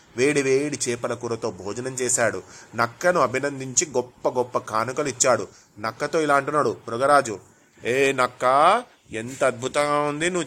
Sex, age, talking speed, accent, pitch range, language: male, 30-49, 120 wpm, native, 125-155 Hz, Telugu